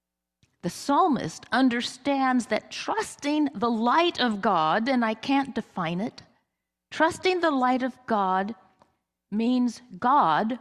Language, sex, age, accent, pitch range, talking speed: English, female, 50-69, American, 160-235 Hz, 120 wpm